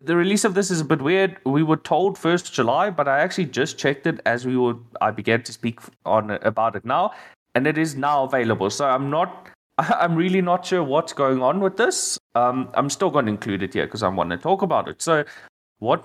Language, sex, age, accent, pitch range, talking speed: English, male, 20-39, South African, 110-150 Hz, 240 wpm